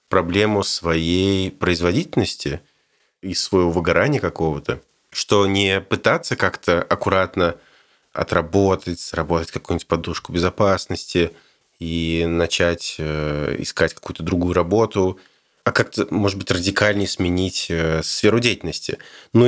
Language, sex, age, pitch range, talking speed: Russian, male, 20-39, 85-115 Hz, 100 wpm